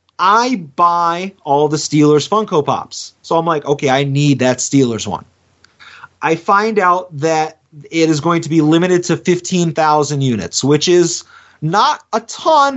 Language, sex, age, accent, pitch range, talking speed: English, male, 30-49, American, 150-200 Hz, 160 wpm